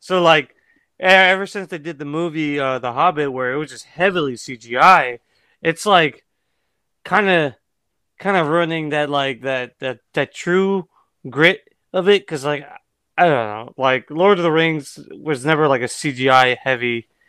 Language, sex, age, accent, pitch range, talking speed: English, male, 20-39, American, 130-165 Hz, 165 wpm